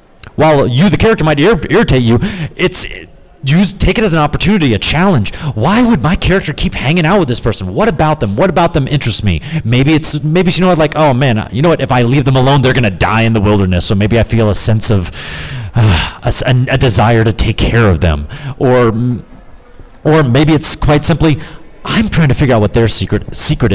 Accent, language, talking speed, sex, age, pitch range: American, English, 225 wpm, male, 30-49, 110-145 Hz